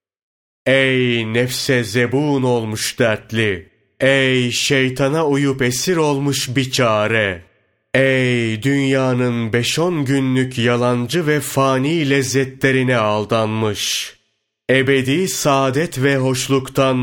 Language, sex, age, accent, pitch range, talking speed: Turkish, male, 30-49, native, 120-140 Hz, 90 wpm